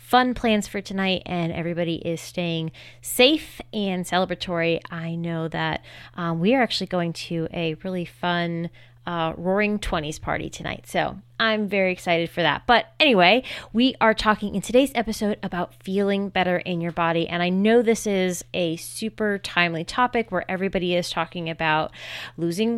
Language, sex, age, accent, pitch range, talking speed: English, female, 20-39, American, 170-210 Hz, 165 wpm